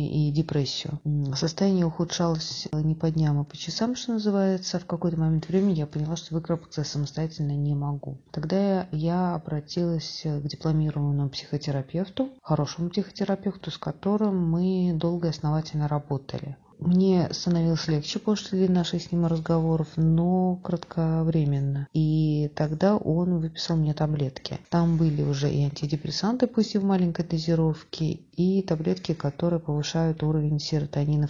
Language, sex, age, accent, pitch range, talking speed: Russian, female, 30-49, native, 150-180 Hz, 135 wpm